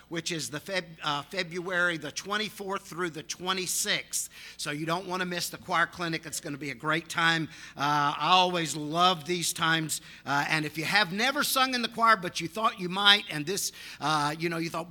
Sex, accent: male, American